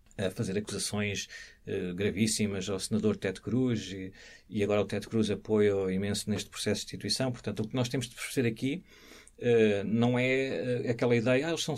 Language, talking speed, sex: Portuguese, 195 wpm, male